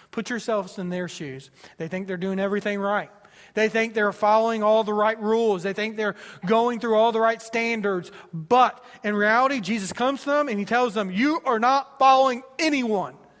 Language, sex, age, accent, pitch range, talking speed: English, male, 40-59, American, 185-250 Hz, 195 wpm